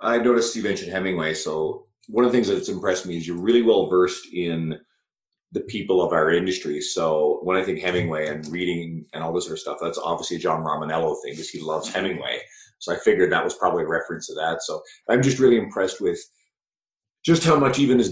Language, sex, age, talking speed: English, male, 30-49, 225 wpm